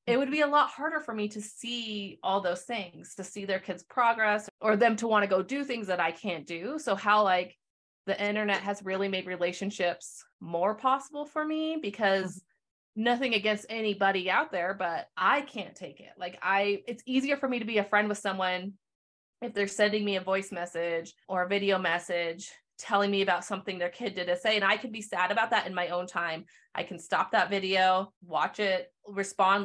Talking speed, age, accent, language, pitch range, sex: 215 wpm, 30-49, American, English, 180-215 Hz, female